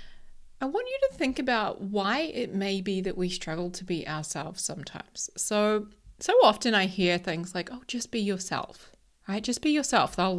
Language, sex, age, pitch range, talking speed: English, female, 30-49, 185-245 Hz, 190 wpm